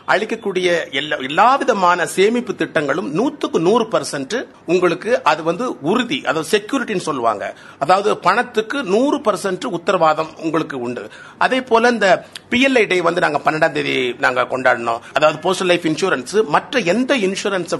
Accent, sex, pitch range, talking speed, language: native, male, 160-245 Hz, 125 wpm, Tamil